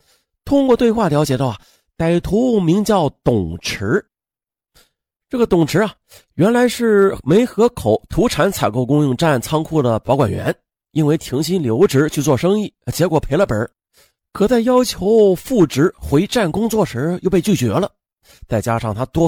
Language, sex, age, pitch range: Chinese, male, 30-49, 120-200 Hz